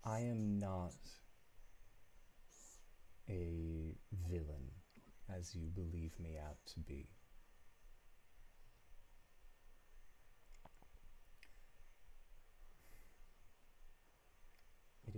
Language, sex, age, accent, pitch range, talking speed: English, male, 40-59, American, 80-100 Hz, 50 wpm